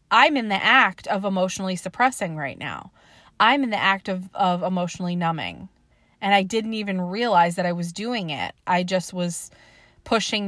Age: 20-39